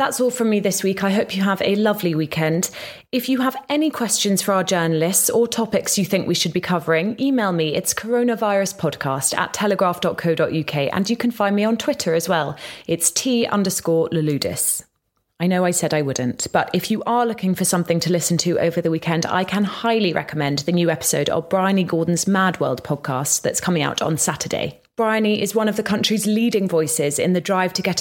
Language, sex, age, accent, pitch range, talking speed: English, female, 30-49, British, 165-220 Hz, 210 wpm